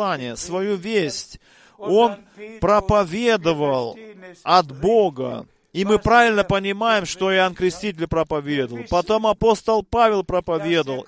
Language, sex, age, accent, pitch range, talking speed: Russian, male, 40-59, native, 170-215 Hz, 100 wpm